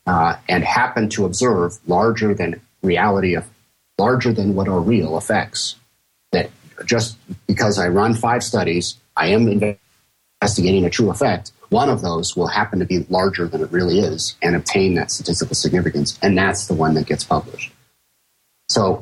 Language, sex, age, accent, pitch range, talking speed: English, male, 40-59, American, 90-110 Hz, 165 wpm